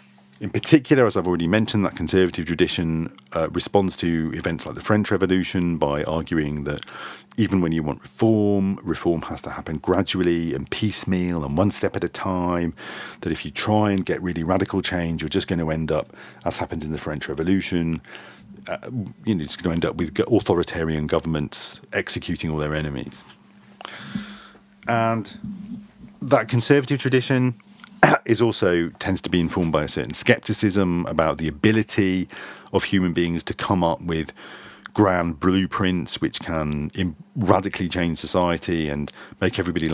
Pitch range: 80-100 Hz